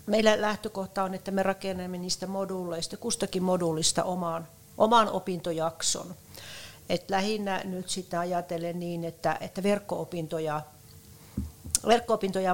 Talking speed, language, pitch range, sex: 110 wpm, Finnish, 155-185 Hz, female